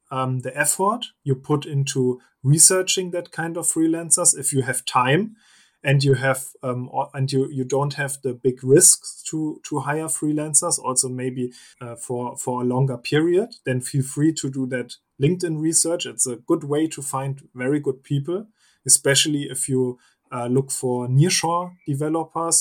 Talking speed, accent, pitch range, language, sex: 170 wpm, German, 130-150 Hz, German, male